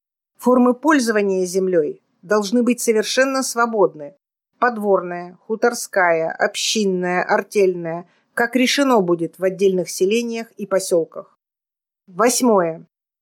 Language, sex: Russian, female